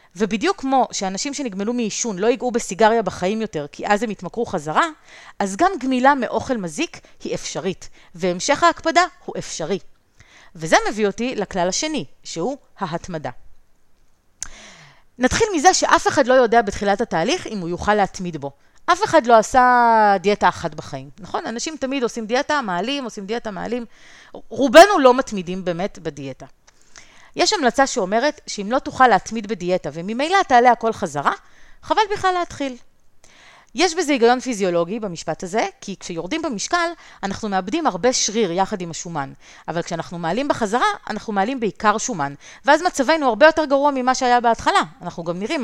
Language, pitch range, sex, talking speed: Hebrew, 180-275 Hz, female, 155 wpm